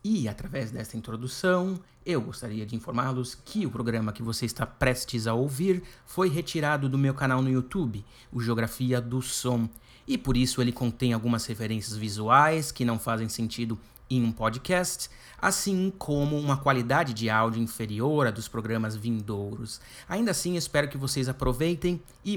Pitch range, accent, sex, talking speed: 115-140 Hz, Brazilian, male, 165 wpm